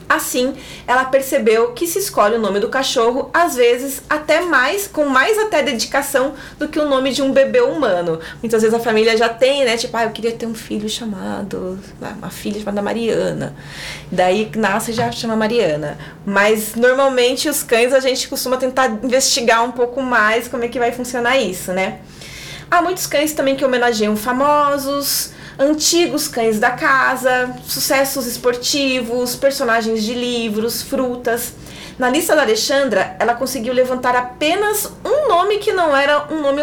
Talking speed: 165 wpm